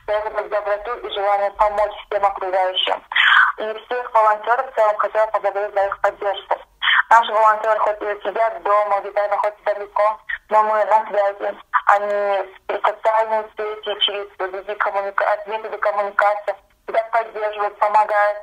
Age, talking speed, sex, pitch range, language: 20-39, 140 wpm, female, 200-220 Hz, Russian